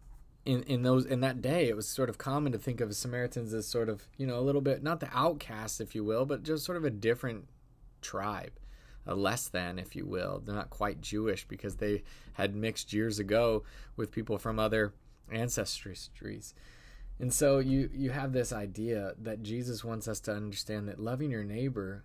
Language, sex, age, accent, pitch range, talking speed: English, male, 20-39, American, 105-135 Hz, 200 wpm